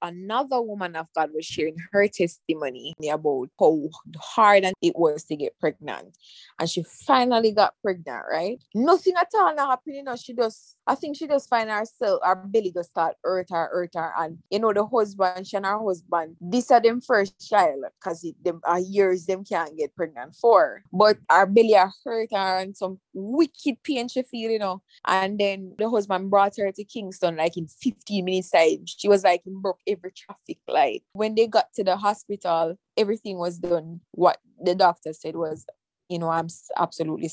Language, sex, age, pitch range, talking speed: English, female, 20-39, 165-215 Hz, 200 wpm